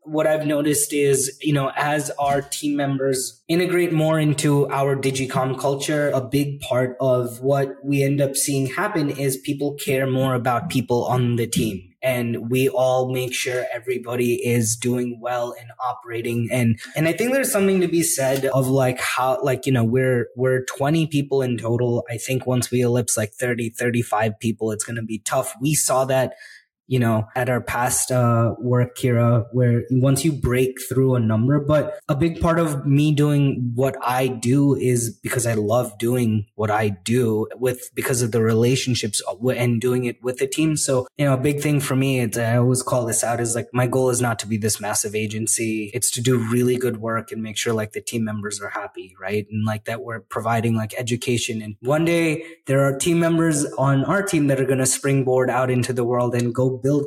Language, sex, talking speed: English, male, 205 wpm